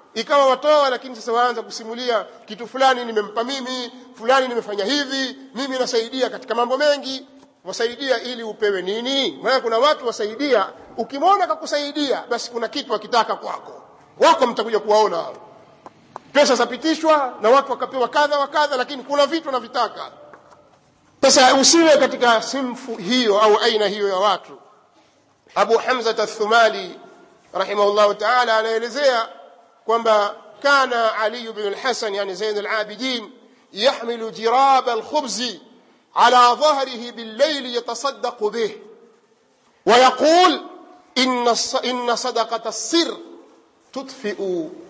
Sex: male